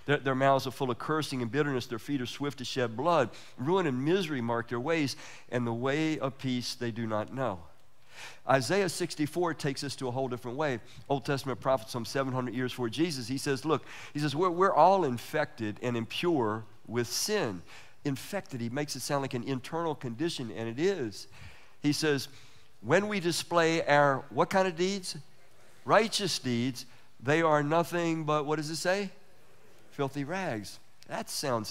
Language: English